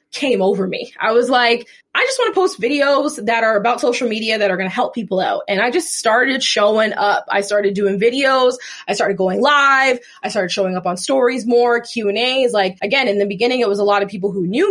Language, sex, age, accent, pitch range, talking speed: English, female, 20-39, American, 195-255 Hz, 250 wpm